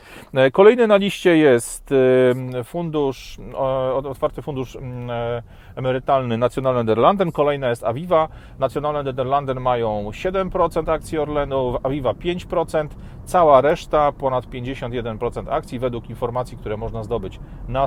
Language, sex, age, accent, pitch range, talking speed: Polish, male, 40-59, native, 115-145 Hz, 105 wpm